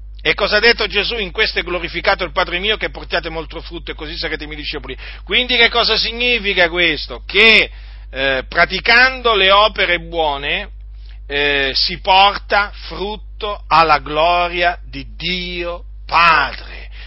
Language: Italian